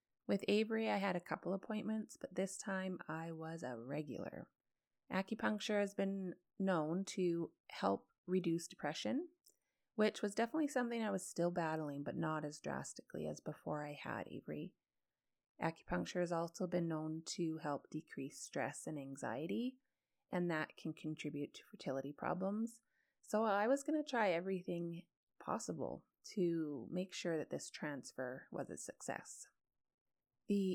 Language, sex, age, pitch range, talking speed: English, female, 30-49, 160-210 Hz, 145 wpm